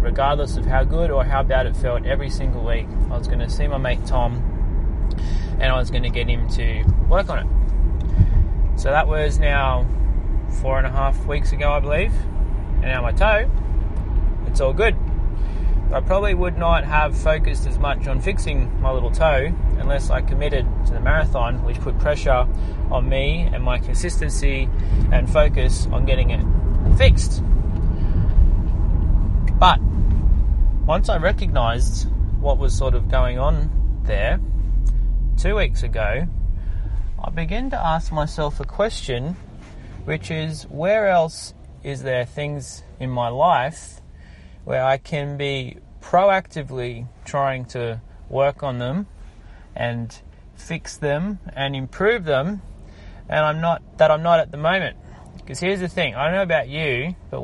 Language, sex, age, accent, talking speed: English, male, 20-39, Australian, 155 wpm